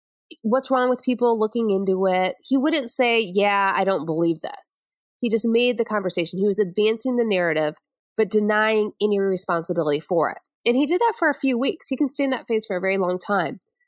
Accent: American